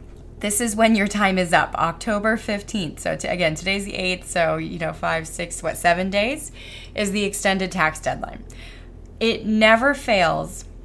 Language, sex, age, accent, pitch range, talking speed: English, female, 20-39, American, 170-220 Hz, 170 wpm